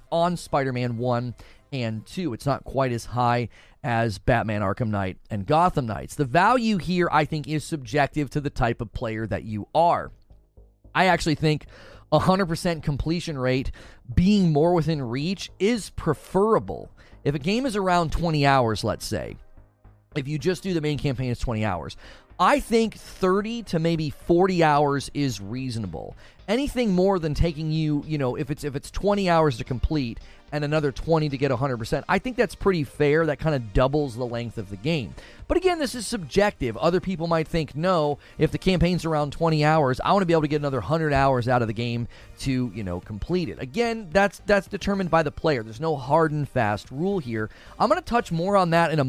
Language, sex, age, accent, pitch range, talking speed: English, male, 30-49, American, 120-170 Hz, 200 wpm